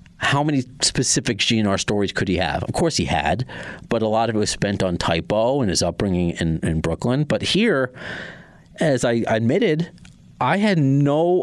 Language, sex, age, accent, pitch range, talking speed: English, male, 40-59, American, 100-145 Hz, 185 wpm